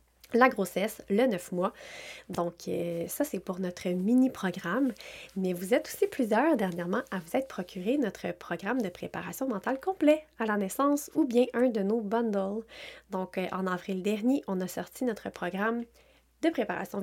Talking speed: 165 wpm